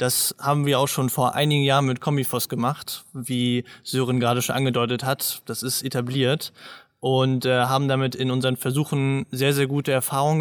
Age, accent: 20-39, German